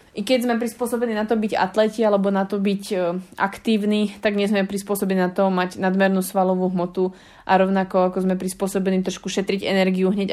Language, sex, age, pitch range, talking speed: Slovak, female, 20-39, 185-205 Hz, 185 wpm